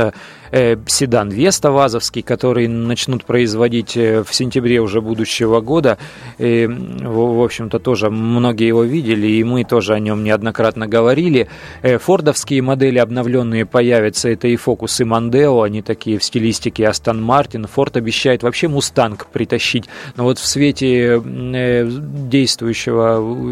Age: 20-39